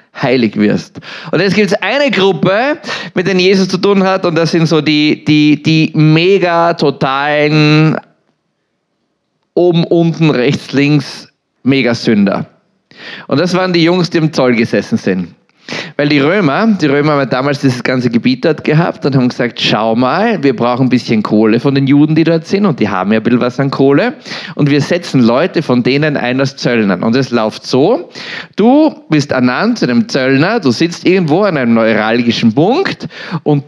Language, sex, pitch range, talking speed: German, male, 125-175 Hz, 185 wpm